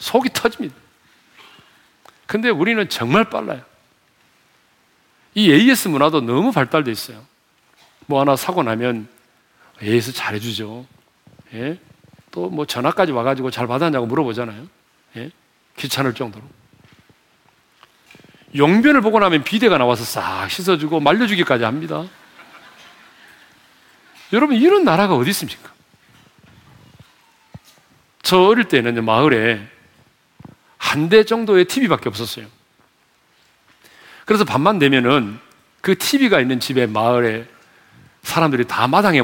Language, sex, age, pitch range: Korean, male, 40-59, 120-200 Hz